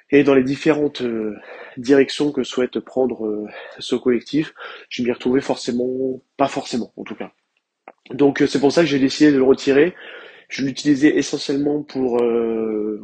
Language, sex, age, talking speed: French, male, 20-39, 170 wpm